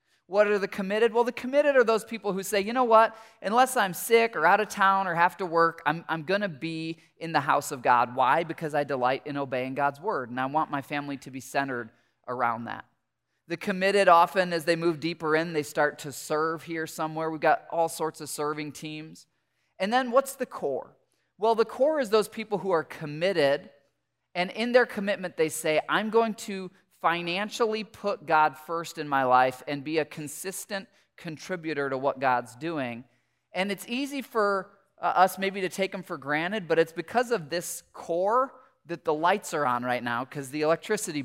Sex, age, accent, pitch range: male, 20-39, American, 145-200 Hz